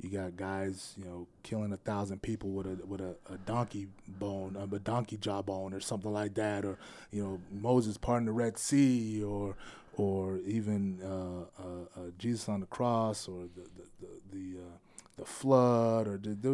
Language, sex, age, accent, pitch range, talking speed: English, male, 20-39, American, 95-110 Hz, 190 wpm